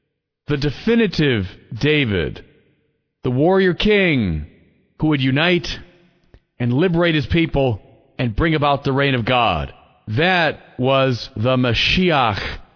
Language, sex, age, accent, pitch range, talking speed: English, male, 40-59, American, 115-165 Hz, 115 wpm